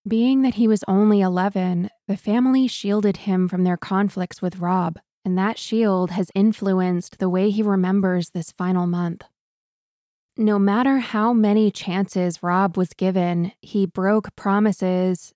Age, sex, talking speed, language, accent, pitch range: 20-39, female, 150 wpm, English, American, 185-210 Hz